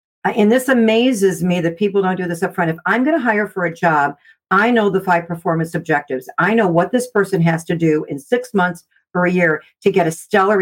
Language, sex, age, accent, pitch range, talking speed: English, female, 50-69, American, 175-225 Hz, 245 wpm